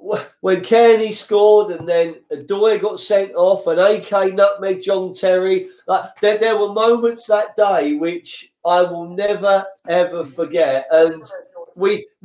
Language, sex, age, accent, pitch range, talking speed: English, male, 40-59, British, 165-210 Hz, 140 wpm